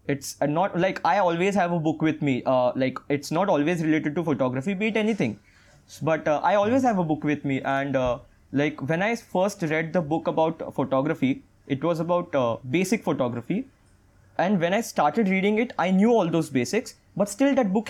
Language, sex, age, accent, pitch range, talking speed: Hindi, male, 20-39, native, 135-190 Hz, 210 wpm